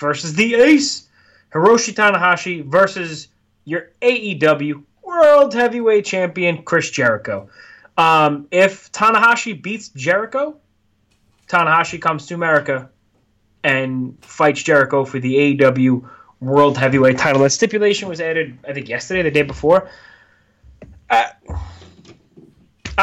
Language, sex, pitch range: English, male, 130-185 Hz